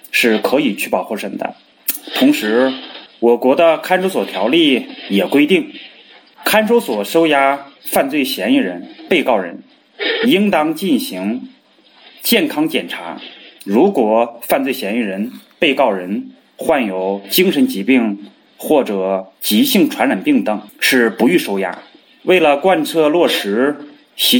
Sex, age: male, 30-49